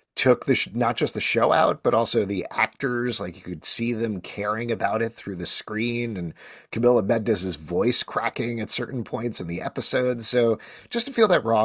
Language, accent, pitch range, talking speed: English, American, 95-125 Hz, 205 wpm